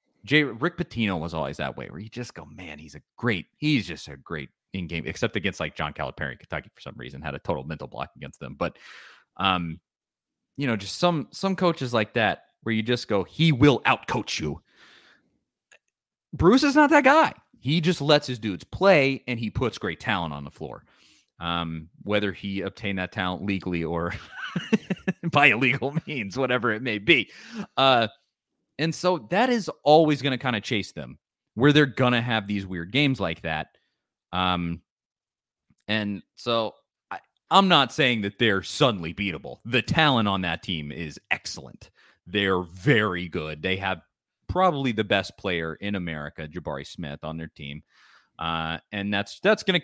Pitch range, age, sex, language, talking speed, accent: 85-145 Hz, 30-49, male, English, 180 wpm, American